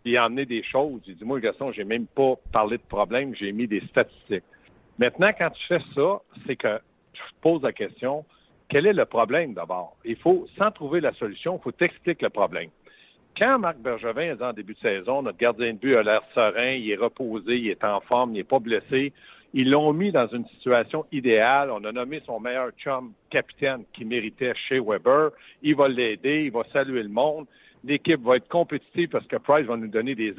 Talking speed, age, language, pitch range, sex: 215 wpm, 60-79, French, 120-160 Hz, male